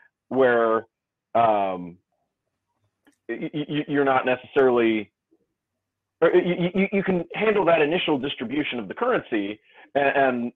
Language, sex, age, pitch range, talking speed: English, male, 30-49, 115-150 Hz, 90 wpm